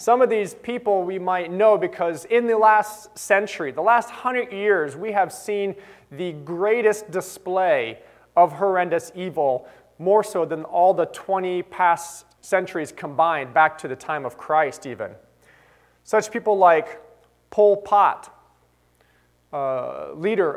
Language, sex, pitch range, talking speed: English, male, 150-205 Hz, 140 wpm